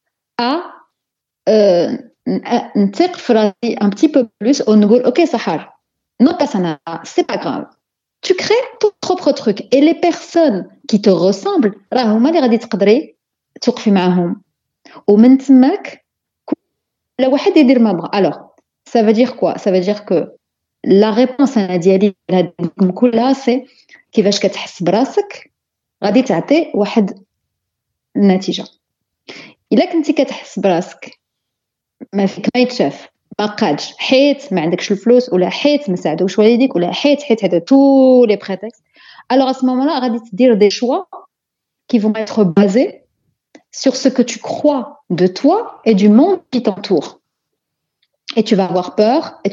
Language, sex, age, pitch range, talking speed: Arabic, female, 30-49, 200-270 Hz, 125 wpm